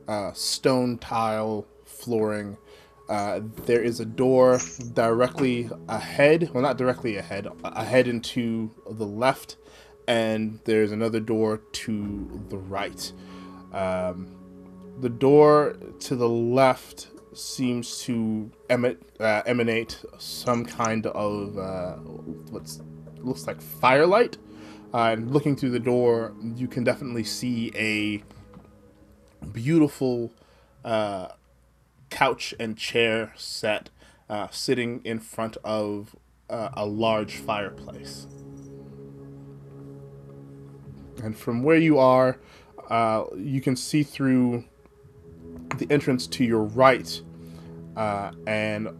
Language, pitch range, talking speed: English, 95-120 Hz, 110 wpm